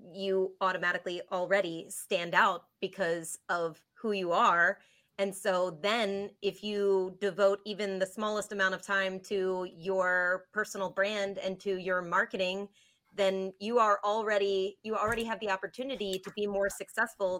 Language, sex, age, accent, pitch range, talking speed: English, female, 30-49, American, 190-215 Hz, 150 wpm